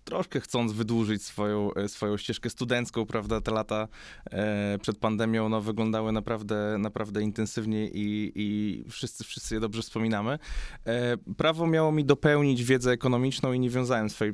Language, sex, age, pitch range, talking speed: Polish, male, 20-39, 105-125 Hz, 140 wpm